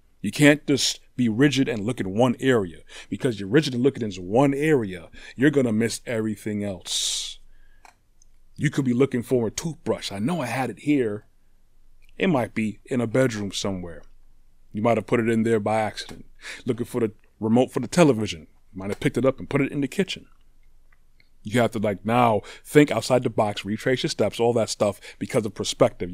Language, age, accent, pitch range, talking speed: English, 30-49, American, 105-135 Hz, 205 wpm